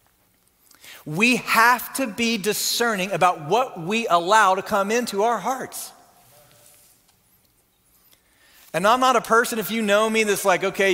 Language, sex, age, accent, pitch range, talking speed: English, male, 40-59, American, 180-235 Hz, 145 wpm